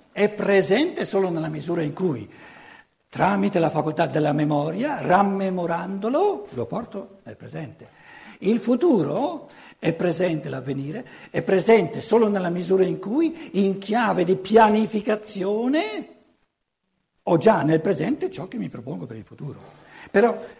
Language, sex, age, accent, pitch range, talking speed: Italian, male, 60-79, native, 180-230 Hz, 130 wpm